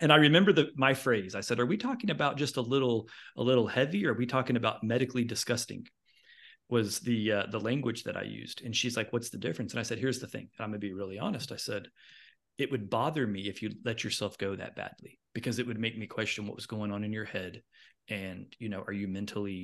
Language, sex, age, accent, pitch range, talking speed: English, male, 30-49, American, 100-120 Hz, 255 wpm